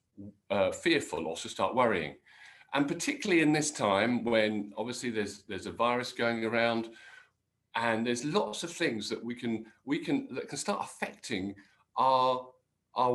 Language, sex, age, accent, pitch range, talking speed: English, male, 50-69, British, 110-160 Hz, 155 wpm